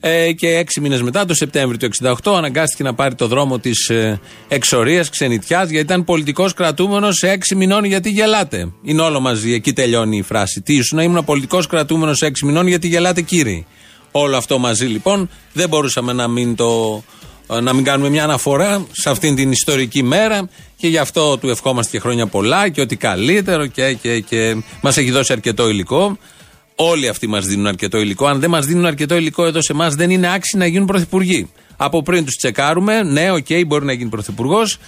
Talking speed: 195 wpm